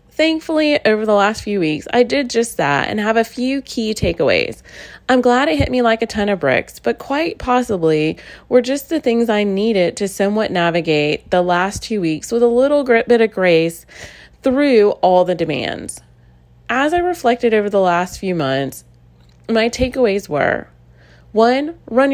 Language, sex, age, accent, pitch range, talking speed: English, female, 30-49, American, 175-245 Hz, 175 wpm